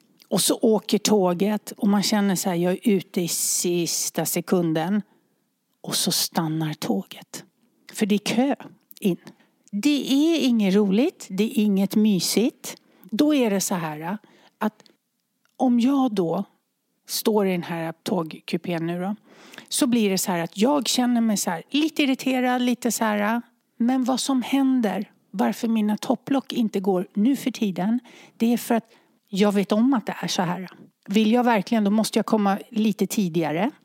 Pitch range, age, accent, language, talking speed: 185-240 Hz, 60-79, Swedish, English, 170 wpm